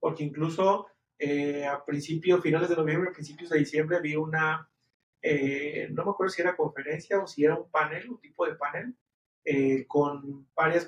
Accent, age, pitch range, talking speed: Mexican, 30-49, 150-175 Hz, 175 wpm